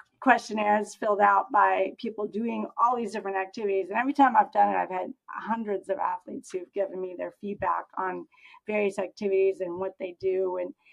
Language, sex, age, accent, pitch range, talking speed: English, female, 40-59, American, 190-235 Hz, 185 wpm